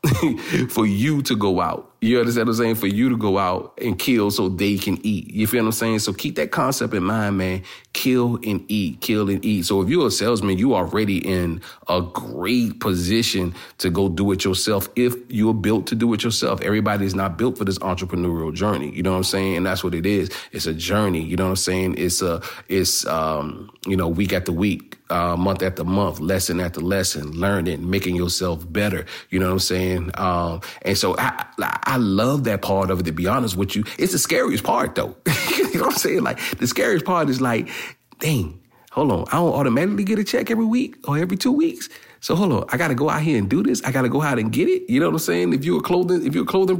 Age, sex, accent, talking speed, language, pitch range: 40-59, male, American, 245 wpm, English, 95-125 Hz